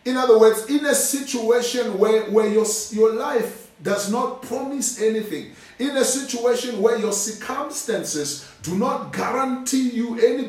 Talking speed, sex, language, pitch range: 150 wpm, male, English, 185-225 Hz